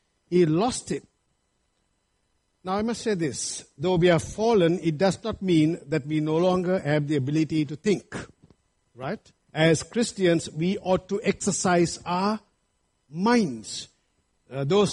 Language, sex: English, male